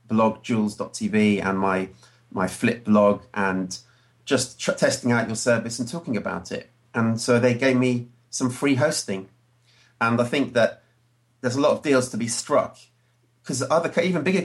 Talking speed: 175 wpm